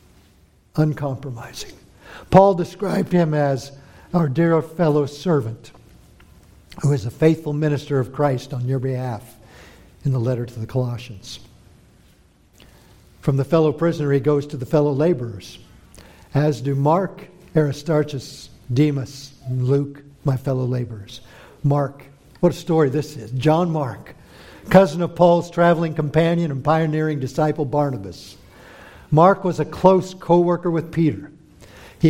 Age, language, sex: 60-79, English, male